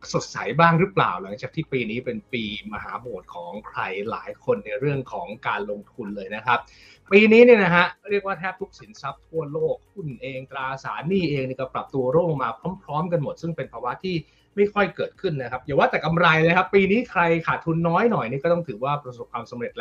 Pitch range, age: 125-175 Hz, 20-39